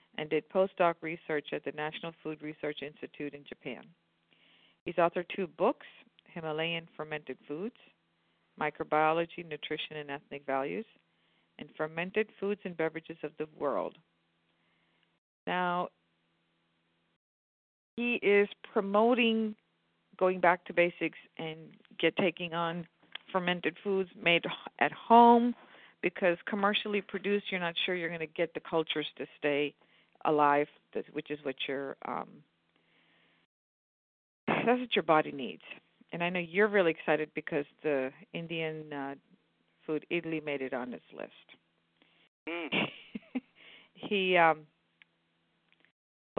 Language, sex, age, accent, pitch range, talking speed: English, female, 50-69, American, 140-180 Hz, 120 wpm